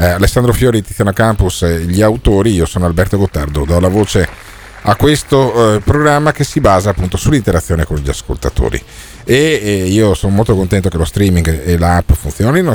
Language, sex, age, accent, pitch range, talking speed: Italian, male, 40-59, native, 95-125 Hz, 180 wpm